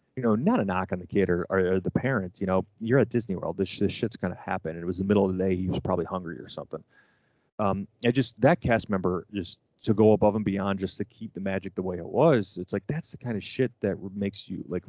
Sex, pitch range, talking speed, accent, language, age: male, 95-110 Hz, 280 wpm, American, English, 30-49